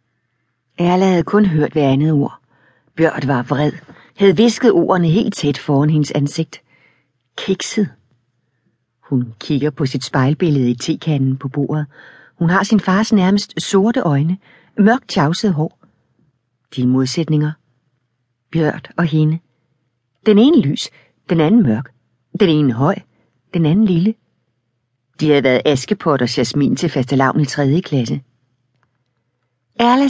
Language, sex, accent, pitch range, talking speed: Danish, female, native, 130-175 Hz, 135 wpm